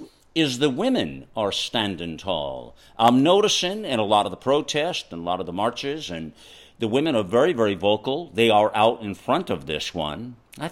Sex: male